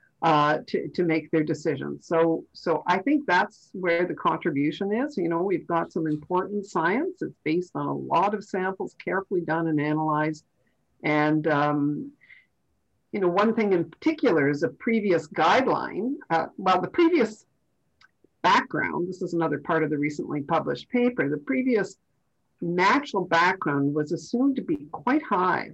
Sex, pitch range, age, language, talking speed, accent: female, 155-200 Hz, 50-69, English, 160 wpm, American